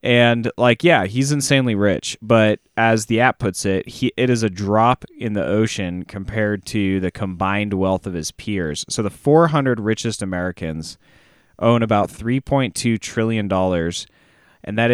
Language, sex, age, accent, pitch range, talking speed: English, male, 20-39, American, 100-125 Hz, 155 wpm